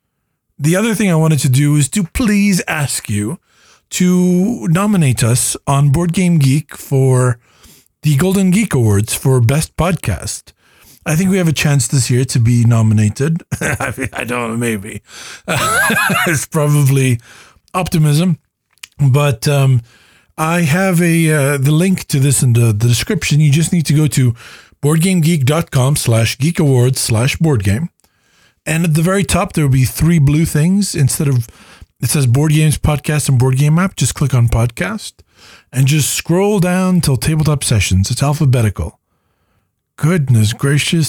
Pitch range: 120-160 Hz